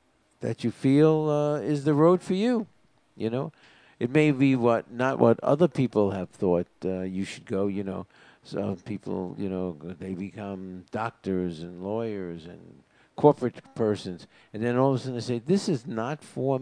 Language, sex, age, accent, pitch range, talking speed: English, male, 60-79, American, 100-135 Hz, 185 wpm